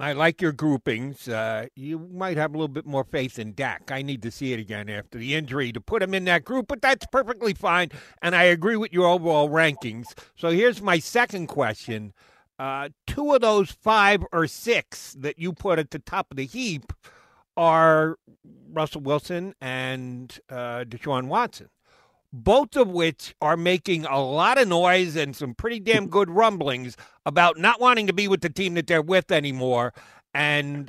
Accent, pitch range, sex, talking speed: American, 135-195 Hz, male, 190 wpm